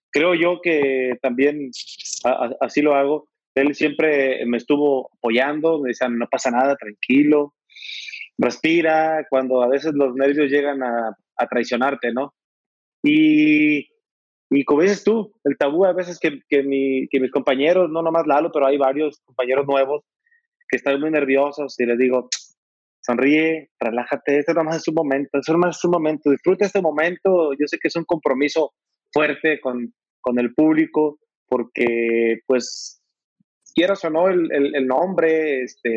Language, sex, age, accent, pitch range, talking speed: Spanish, male, 30-49, Mexican, 130-170 Hz, 160 wpm